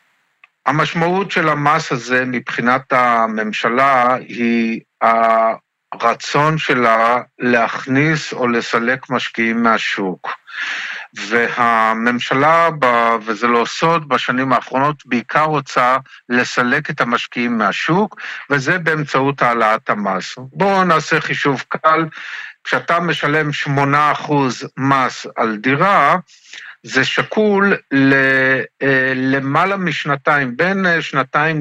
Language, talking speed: Hebrew, 85 wpm